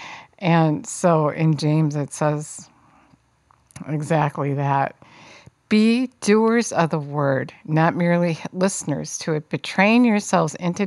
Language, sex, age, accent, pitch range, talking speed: English, female, 50-69, American, 155-195 Hz, 115 wpm